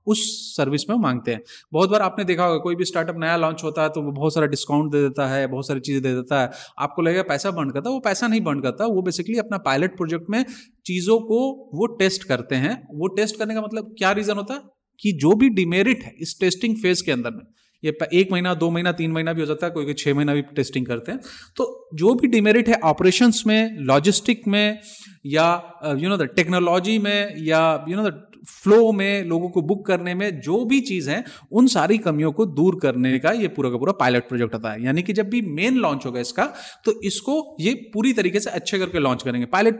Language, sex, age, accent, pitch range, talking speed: Hindi, male, 30-49, native, 150-215 Hz, 185 wpm